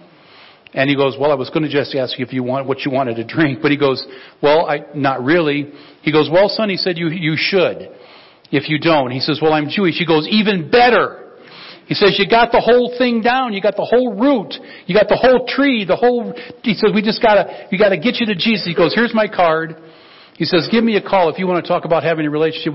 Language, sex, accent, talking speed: English, male, American, 260 wpm